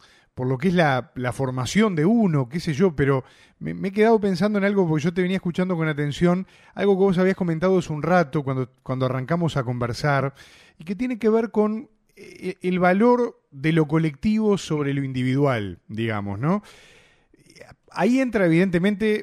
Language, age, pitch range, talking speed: English, 30-49, 140-185 Hz, 185 wpm